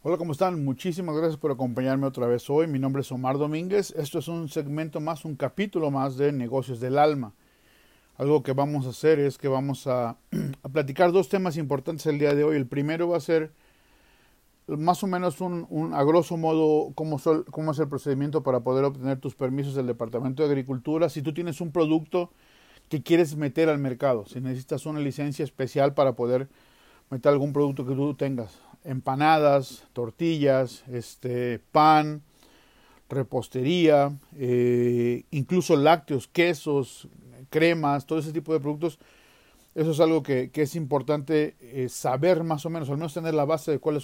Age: 40-59